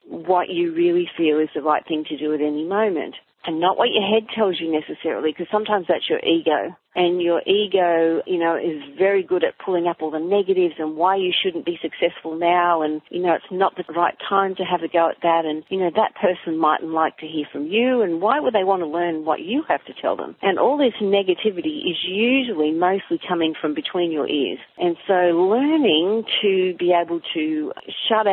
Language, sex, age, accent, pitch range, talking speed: English, female, 40-59, Australian, 160-195 Hz, 220 wpm